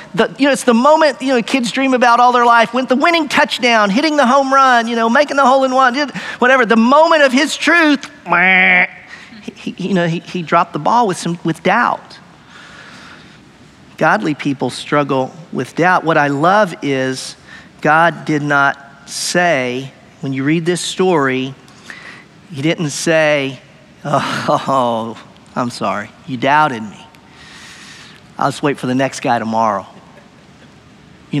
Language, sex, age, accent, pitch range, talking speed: English, male, 40-59, American, 145-230 Hz, 155 wpm